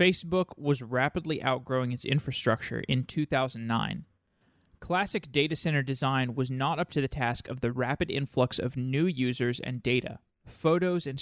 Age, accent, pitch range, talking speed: 20-39, American, 130-160 Hz, 155 wpm